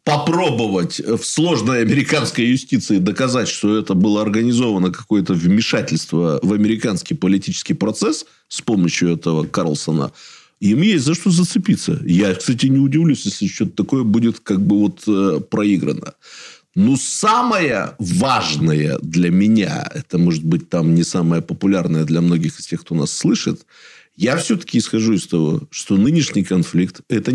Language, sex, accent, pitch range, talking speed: Russian, male, native, 90-145 Hz, 145 wpm